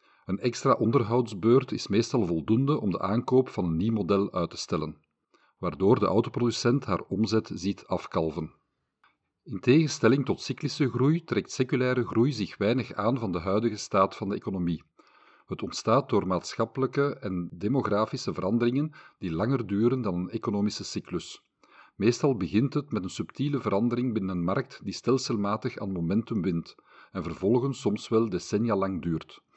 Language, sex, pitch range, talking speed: Dutch, male, 100-130 Hz, 155 wpm